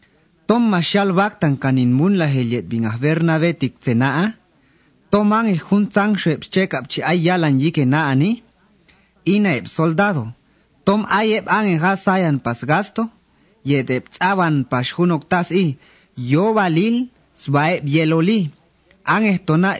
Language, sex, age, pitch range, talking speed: English, male, 30-49, 150-200 Hz, 120 wpm